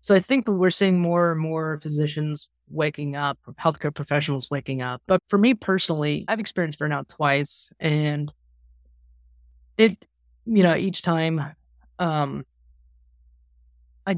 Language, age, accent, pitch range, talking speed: English, 20-39, American, 125-160 Hz, 130 wpm